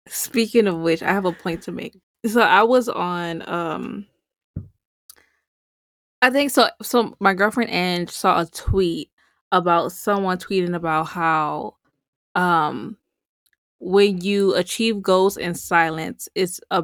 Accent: American